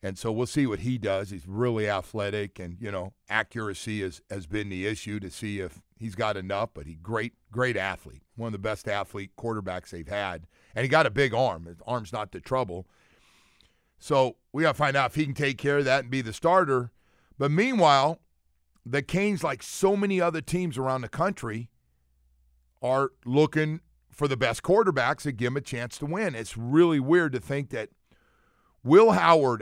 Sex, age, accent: male, 50-69, American